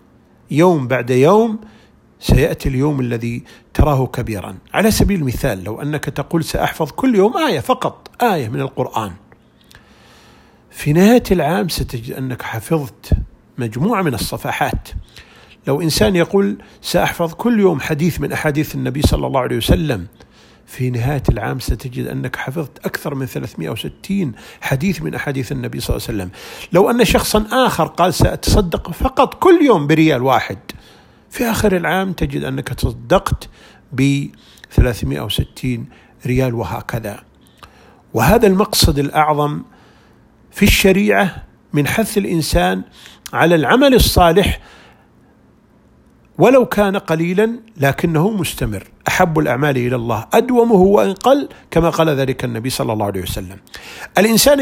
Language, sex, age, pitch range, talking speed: Arabic, male, 50-69, 130-195 Hz, 125 wpm